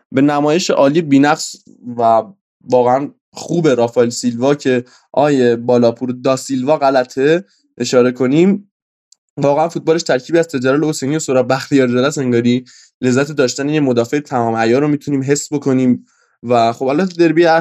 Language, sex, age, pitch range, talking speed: Persian, male, 20-39, 125-150 Hz, 140 wpm